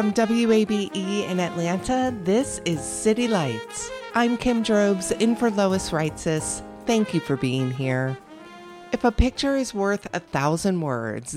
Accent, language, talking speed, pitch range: American, English, 150 wpm, 150-225 Hz